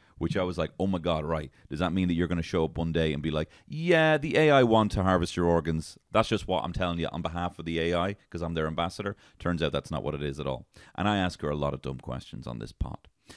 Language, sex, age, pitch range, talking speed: English, male, 30-49, 80-100 Hz, 295 wpm